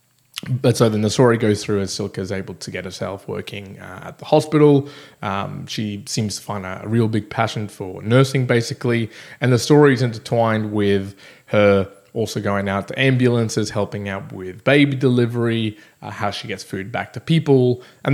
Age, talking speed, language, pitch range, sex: 20-39, 190 wpm, English, 100-130 Hz, male